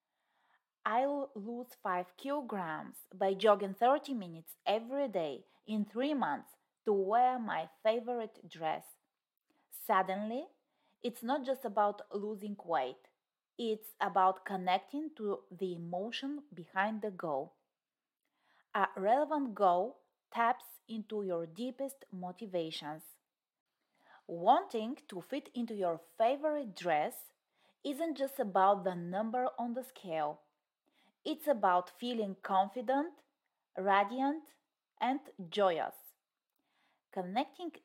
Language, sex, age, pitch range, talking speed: English, female, 30-49, 190-260 Hz, 105 wpm